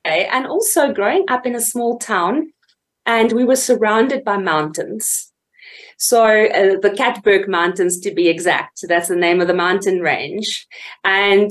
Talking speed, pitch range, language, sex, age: 160 wpm, 200-265 Hz, English, female, 30-49